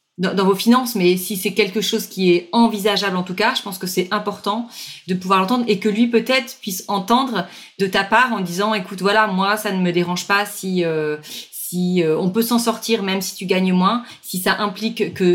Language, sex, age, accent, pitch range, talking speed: French, female, 30-49, French, 180-210 Hz, 225 wpm